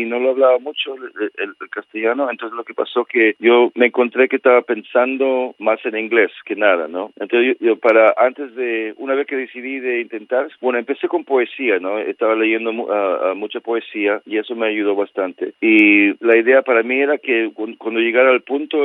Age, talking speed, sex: 40-59, 205 wpm, male